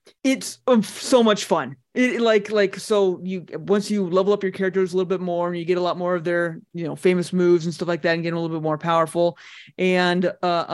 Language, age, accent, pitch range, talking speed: English, 30-49, American, 170-225 Hz, 245 wpm